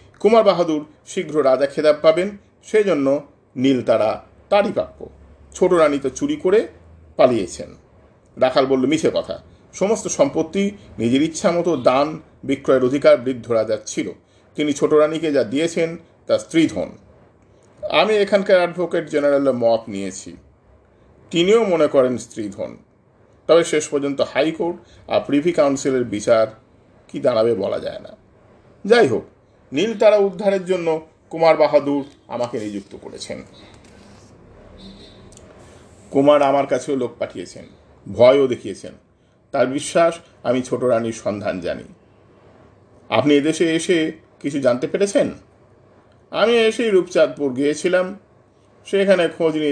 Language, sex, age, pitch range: Hindi, male, 50-69, 125-185 Hz